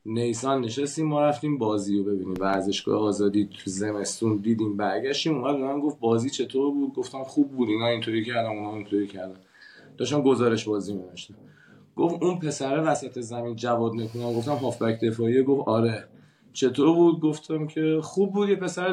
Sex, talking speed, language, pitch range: male, 160 wpm, Persian, 110-150 Hz